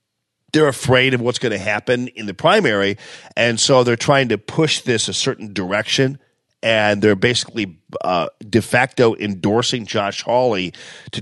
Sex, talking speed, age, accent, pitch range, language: male, 160 wpm, 40-59, American, 110-135 Hz, English